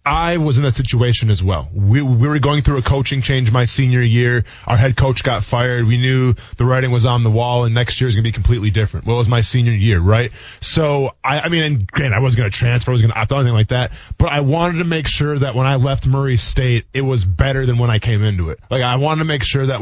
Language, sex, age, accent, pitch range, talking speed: English, male, 20-39, American, 115-140 Hz, 285 wpm